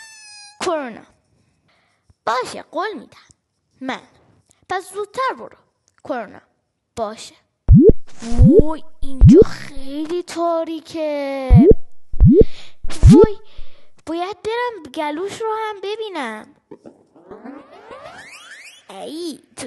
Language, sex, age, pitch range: Persian, female, 10-29, 275-405 Hz